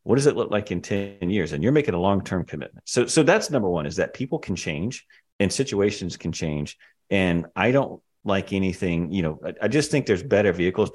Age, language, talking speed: 40-59, English, 230 wpm